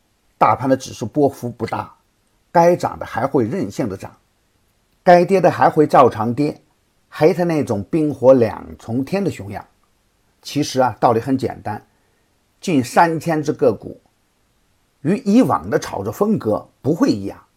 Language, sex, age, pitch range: Chinese, male, 50-69, 105-170 Hz